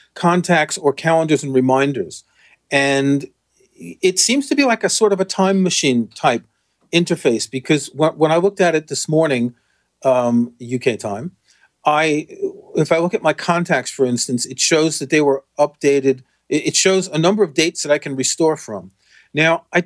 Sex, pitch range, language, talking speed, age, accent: male, 135-175 Hz, English, 175 wpm, 40-59, American